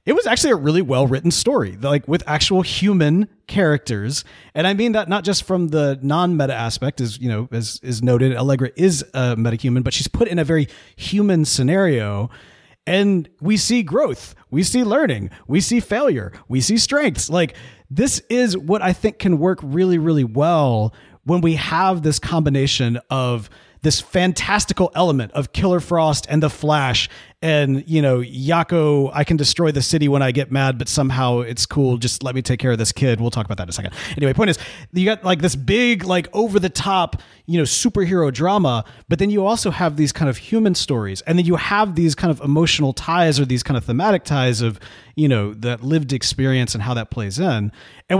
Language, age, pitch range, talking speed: English, 30-49, 125-185 Hz, 205 wpm